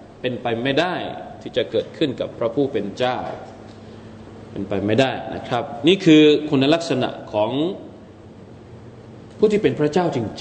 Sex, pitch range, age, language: male, 115-155 Hz, 20-39, Thai